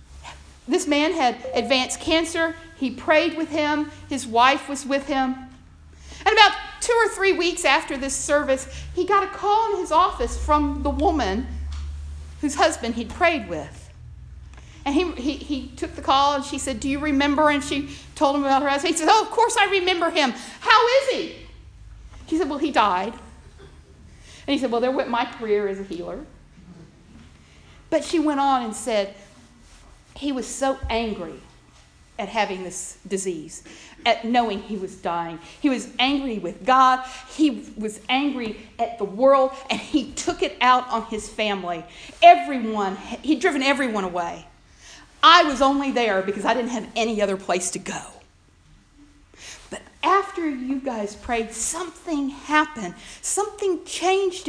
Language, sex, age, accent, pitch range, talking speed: English, female, 50-69, American, 220-315 Hz, 165 wpm